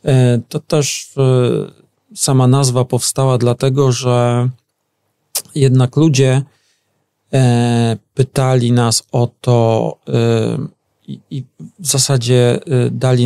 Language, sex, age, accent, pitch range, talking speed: Polish, male, 40-59, native, 115-130 Hz, 75 wpm